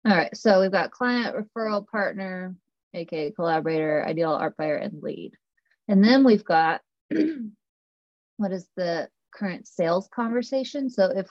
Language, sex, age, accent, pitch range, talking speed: English, female, 20-39, American, 160-220 Hz, 145 wpm